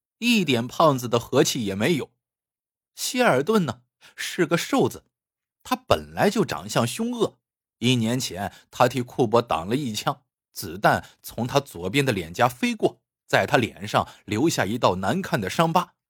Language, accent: Chinese, native